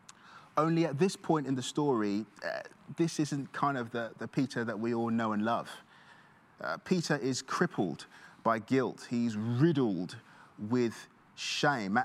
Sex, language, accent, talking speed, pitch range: male, English, British, 155 wpm, 125-170 Hz